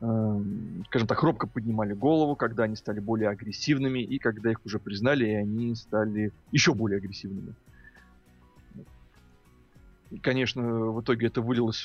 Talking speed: 130 wpm